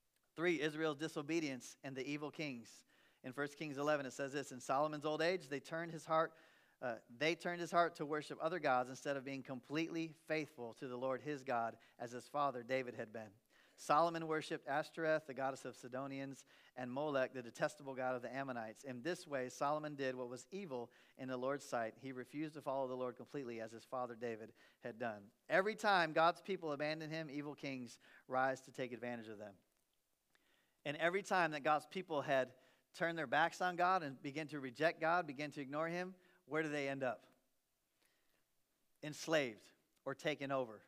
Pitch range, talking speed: 130-160 Hz, 185 wpm